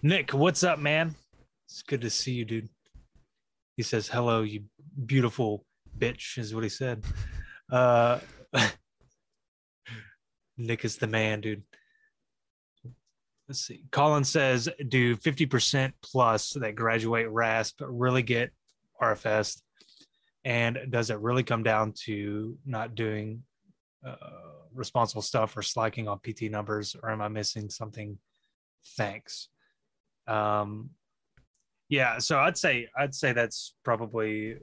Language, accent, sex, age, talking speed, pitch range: English, American, male, 20-39, 125 wpm, 105-125 Hz